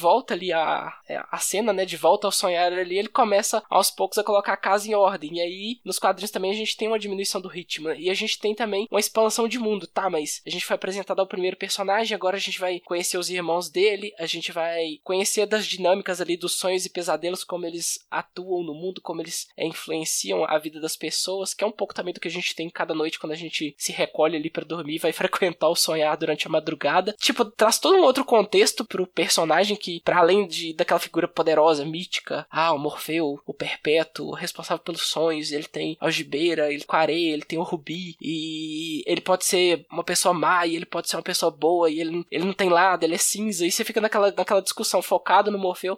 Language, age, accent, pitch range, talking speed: Portuguese, 20-39, Brazilian, 165-205 Hz, 230 wpm